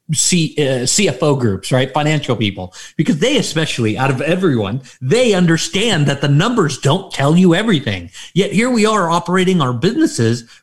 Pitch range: 130-175 Hz